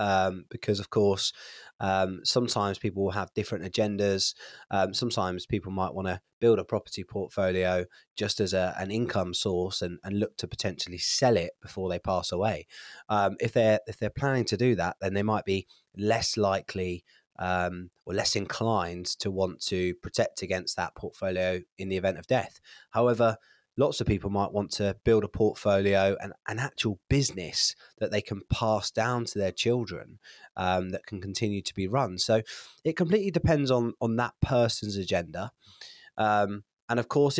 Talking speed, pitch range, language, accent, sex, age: 180 wpm, 95-110 Hz, English, British, male, 20-39